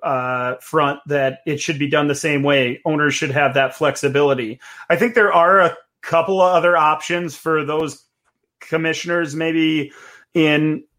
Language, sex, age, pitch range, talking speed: English, male, 30-49, 145-170 Hz, 160 wpm